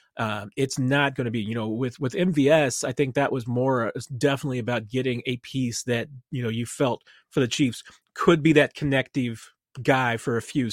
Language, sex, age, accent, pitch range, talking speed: English, male, 30-49, American, 120-150 Hz, 205 wpm